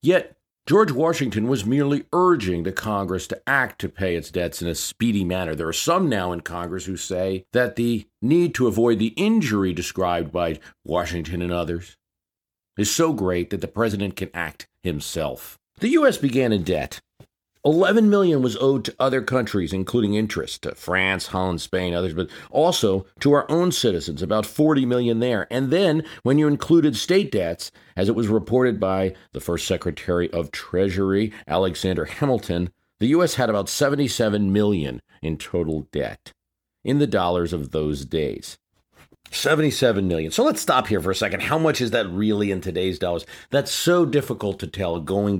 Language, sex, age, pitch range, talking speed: English, male, 40-59, 90-120 Hz, 175 wpm